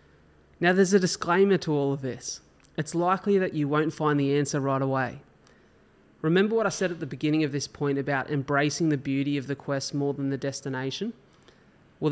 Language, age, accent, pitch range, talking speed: English, 20-39, Australian, 135-155 Hz, 200 wpm